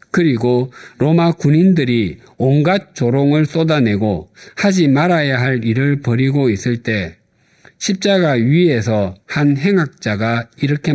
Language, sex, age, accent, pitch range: Korean, male, 50-69, native, 110-155 Hz